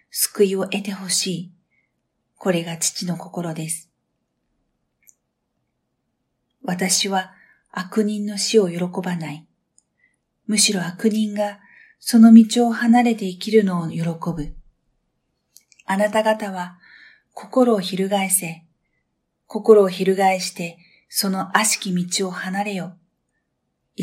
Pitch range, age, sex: 170-200 Hz, 40-59, female